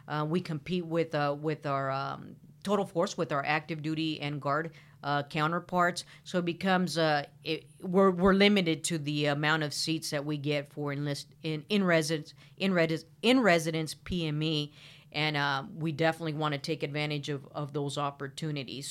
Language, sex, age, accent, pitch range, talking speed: English, female, 50-69, American, 150-175 Hz, 170 wpm